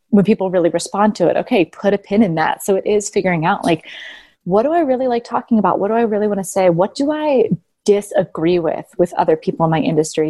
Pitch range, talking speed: 175-220 Hz, 250 wpm